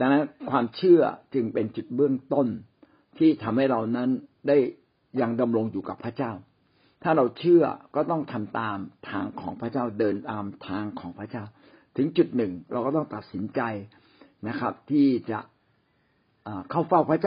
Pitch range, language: 110-155 Hz, Thai